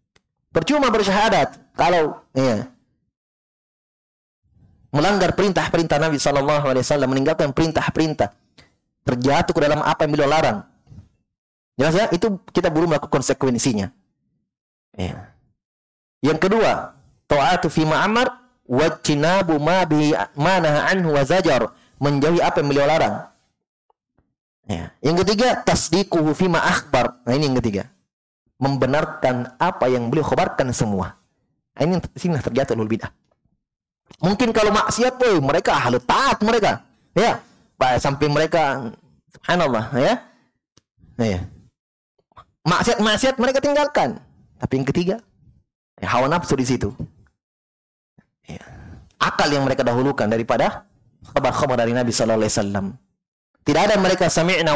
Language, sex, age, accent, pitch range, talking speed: Indonesian, male, 30-49, native, 125-180 Hz, 120 wpm